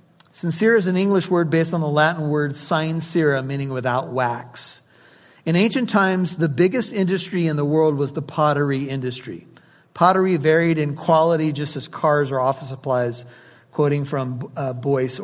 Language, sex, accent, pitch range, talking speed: English, male, American, 150-180 Hz, 160 wpm